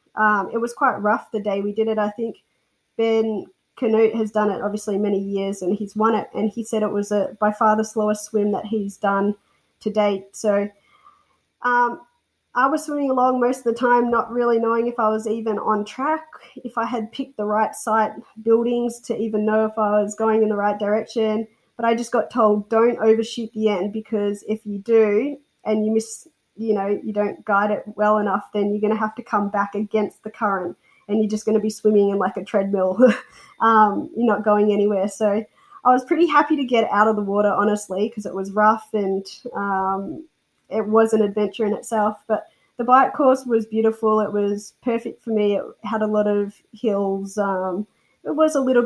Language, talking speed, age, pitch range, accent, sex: English, 215 wpm, 20-39, 205-230 Hz, Australian, female